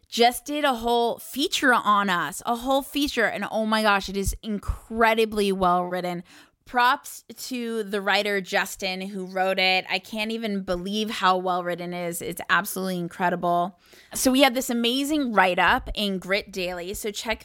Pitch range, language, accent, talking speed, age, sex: 185-235 Hz, English, American, 170 wpm, 20-39, female